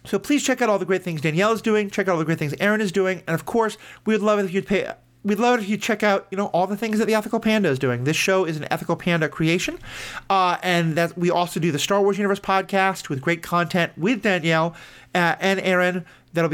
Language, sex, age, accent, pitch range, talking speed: English, male, 40-59, American, 155-200 Hz, 270 wpm